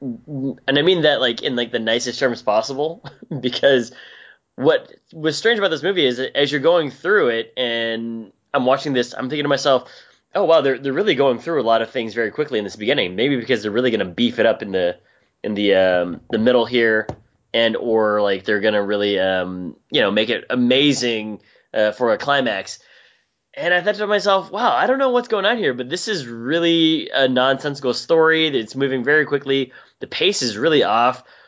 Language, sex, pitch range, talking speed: English, male, 115-150 Hz, 215 wpm